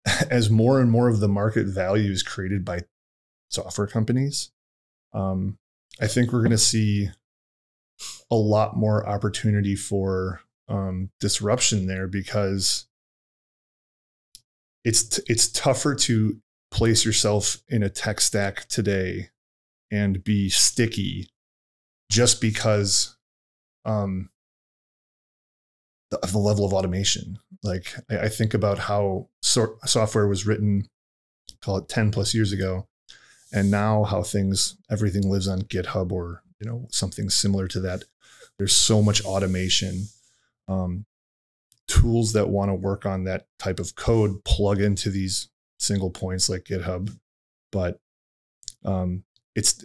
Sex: male